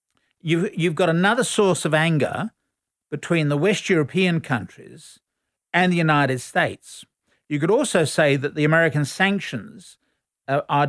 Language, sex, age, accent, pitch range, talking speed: English, male, 50-69, Australian, 135-170 Hz, 130 wpm